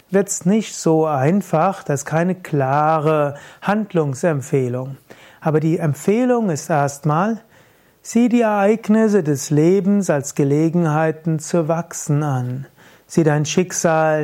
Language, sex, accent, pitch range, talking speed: German, male, German, 145-180 Hz, 115 wpm